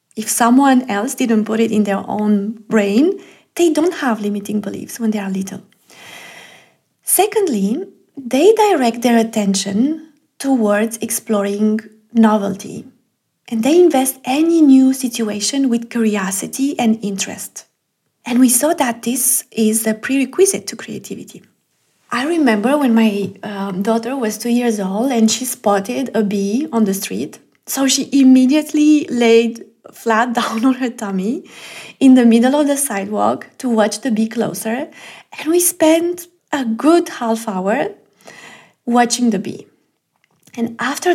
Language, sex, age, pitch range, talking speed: English, female, 30-49, 215-270 Hz, 140 wpm